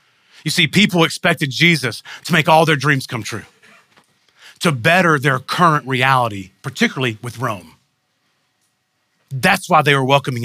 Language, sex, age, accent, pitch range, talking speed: English, male, 40-59, American, 155-200 Hz, 145 wpm